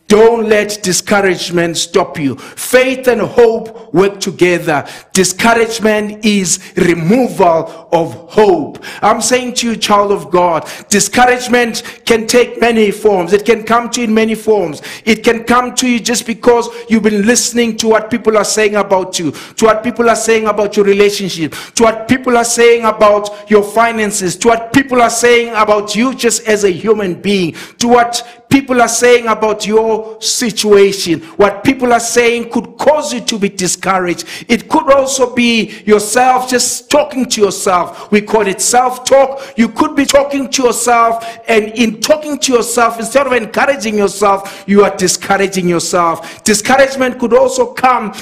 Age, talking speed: 50-69, 165 wpm